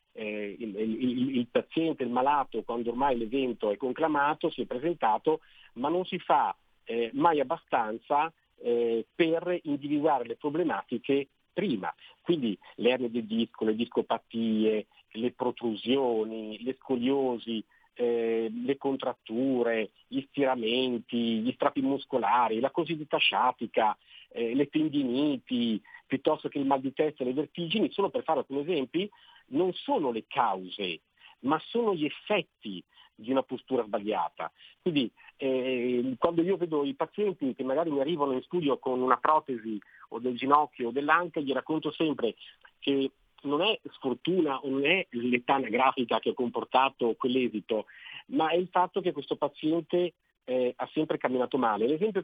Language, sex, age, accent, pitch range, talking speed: Italian, male, 50-69, native, 120-160 Hz, 150 wpm